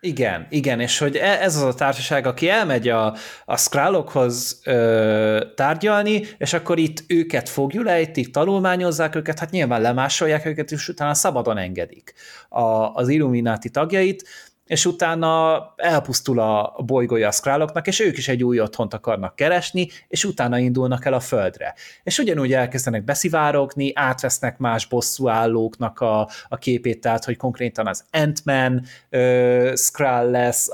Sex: male